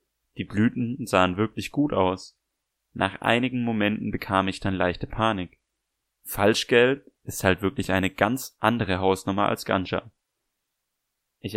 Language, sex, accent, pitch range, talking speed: German, male, German, 95-115 Hz, 130 wpm